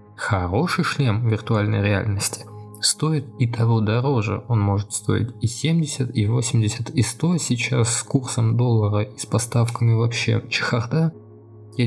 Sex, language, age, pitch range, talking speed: male, Russian, 20-39, 110-130 Hz, 135 wpm